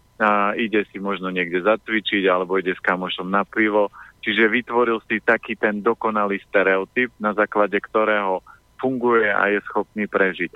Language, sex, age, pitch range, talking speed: Slovak, male, 40-59, 105-125 Hz, 155 wpm